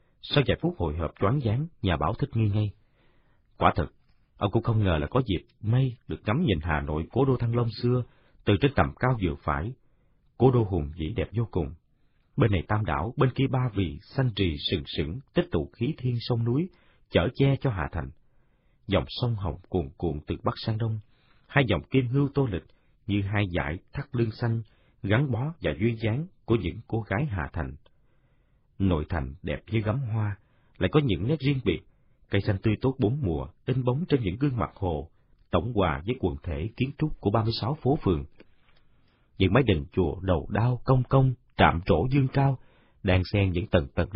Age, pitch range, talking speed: 40-59, 90-125 Hz, 210 wpm